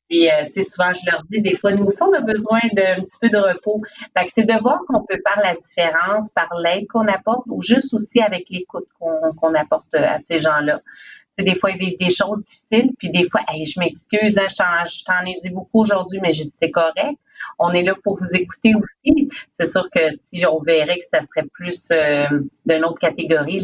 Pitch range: 160-195 Hz